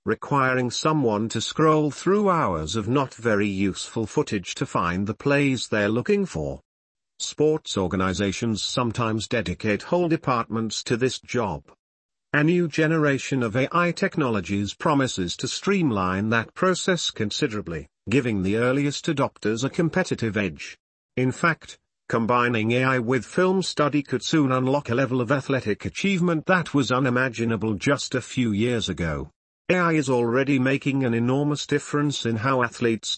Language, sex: English, male